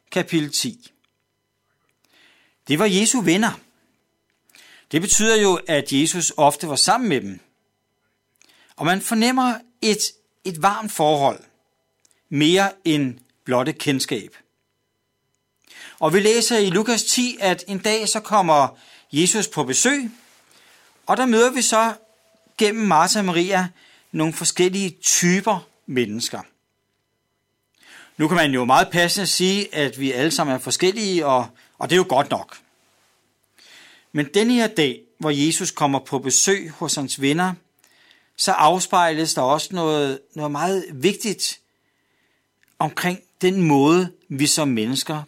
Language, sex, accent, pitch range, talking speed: Danish, male, native, 145-210 Hz, 135 wpm